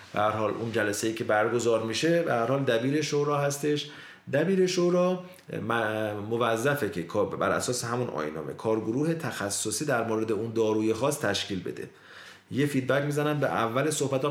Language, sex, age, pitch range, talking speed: Persian, male, 30-49, 110-145 Hz, 145 wpm